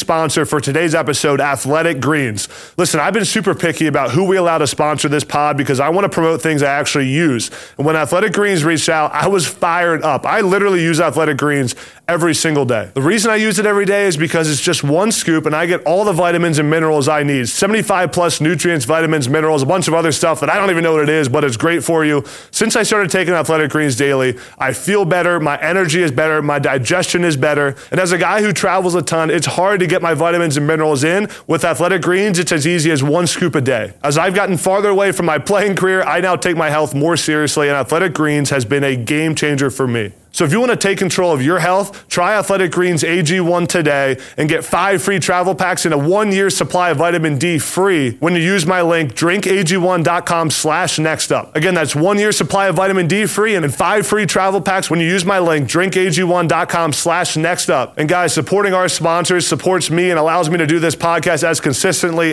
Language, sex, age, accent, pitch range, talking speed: English, male, 20-39, American, 155-185 Hz, 230 wpm